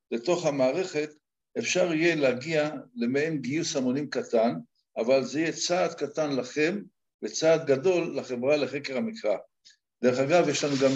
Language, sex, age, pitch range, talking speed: Hebrew, male, 60-79, 125-155 Hz, 135 wpm